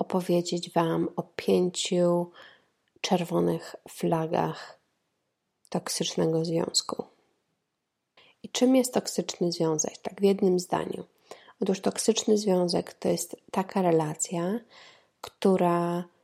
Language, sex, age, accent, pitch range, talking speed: Polish, female, 20-39, native, 175-200 Hz, 90 wpm